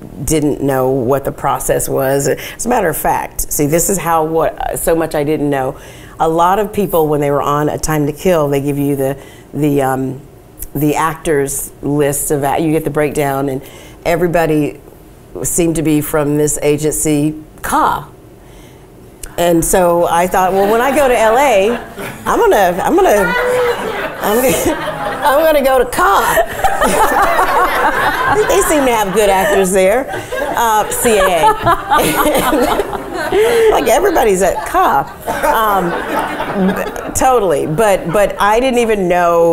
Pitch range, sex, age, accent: 145-205 Hz, female, 40-59, American